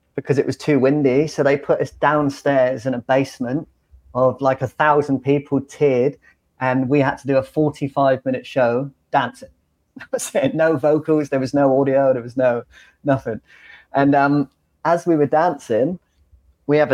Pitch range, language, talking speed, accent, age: 130-150 Hz, English, 165 wpm, British, 30-49